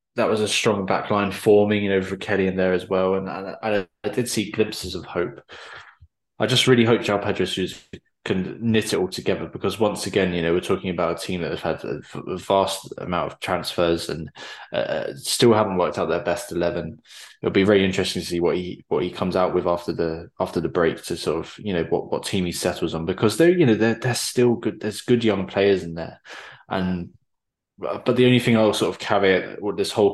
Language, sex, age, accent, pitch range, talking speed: English, male, 20-39, British, 90-105 Hz, 235 wpm